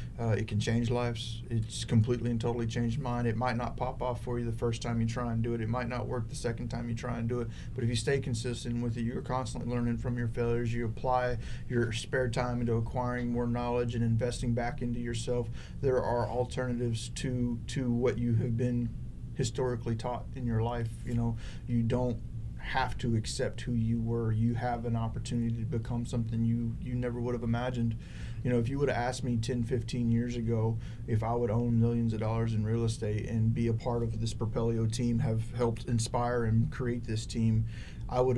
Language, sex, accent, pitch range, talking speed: English, male, American, 115-120 Hz, 220 wpm